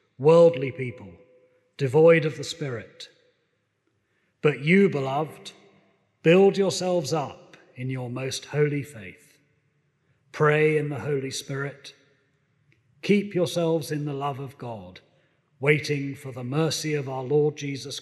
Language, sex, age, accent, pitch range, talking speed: English, male, 40-59, British, 130-155 Hz, 125 wpm